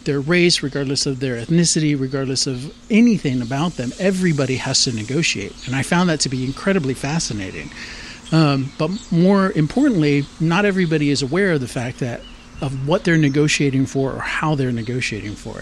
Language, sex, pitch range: English, male, 130-160 Hz